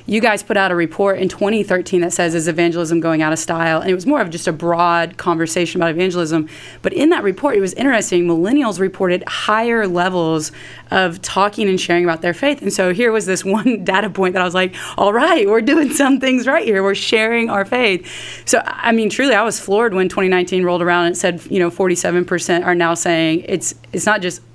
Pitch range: 175-210 Hz